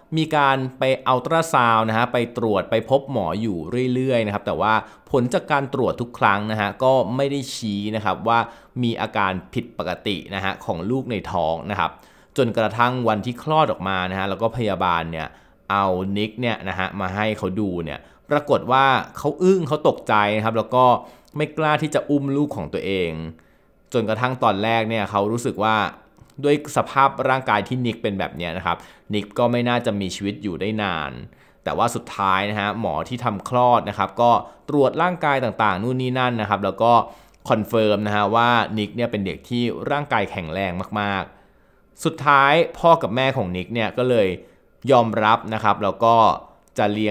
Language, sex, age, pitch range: Thai, male, 20-39, 100-130 Hz